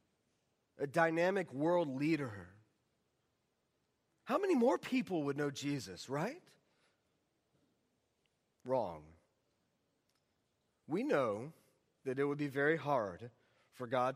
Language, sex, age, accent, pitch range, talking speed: English, male, 30-49, American, 125-185 Hz, 95 wpm